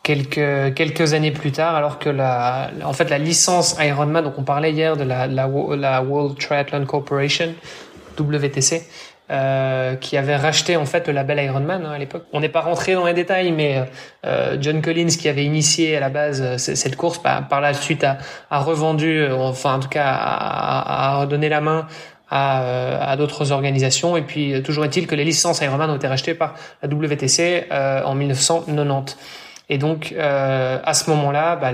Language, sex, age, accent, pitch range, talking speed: French, male, 20-39, French, 140-160 Hz, 195 wpm